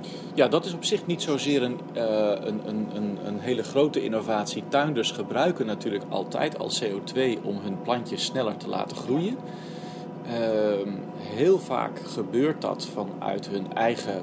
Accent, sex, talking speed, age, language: Dutch, male, 135 wpm, 40-59, Dutch